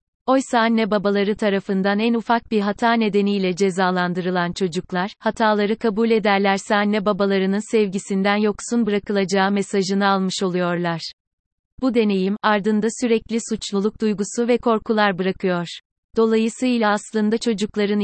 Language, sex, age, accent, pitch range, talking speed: Turkish, female, 30-49, native, 190-220 Hz, 115 wpm